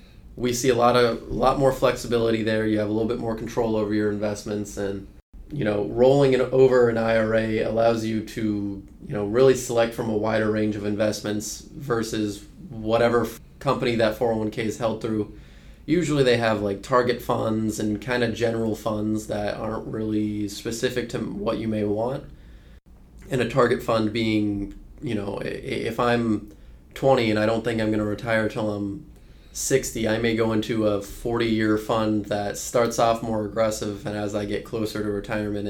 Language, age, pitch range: English, 20-39, 105-115 Hz